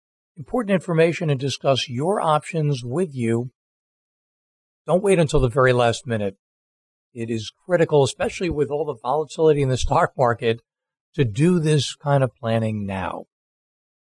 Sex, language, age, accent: male, English, 60-79, American